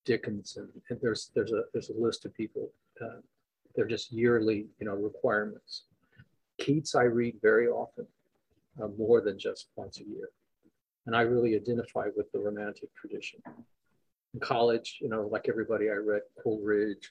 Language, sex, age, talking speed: English, male, 50-69, 160 wpm